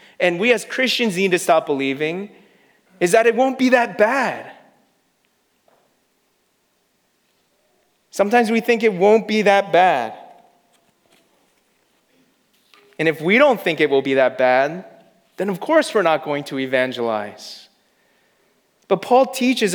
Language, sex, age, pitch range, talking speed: English, male, 30-49, 160-210 Hz, 135 wpm